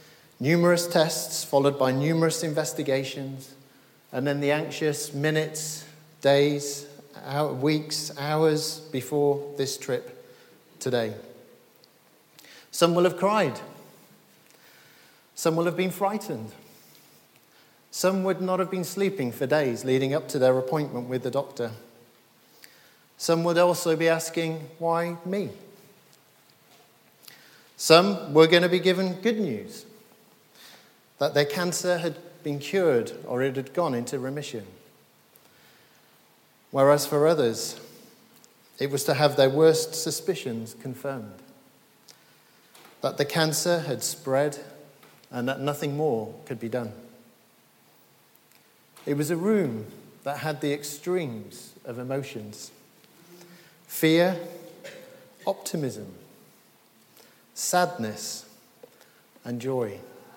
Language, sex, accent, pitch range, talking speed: English, male, British, 135-175 Hz, 105 wpm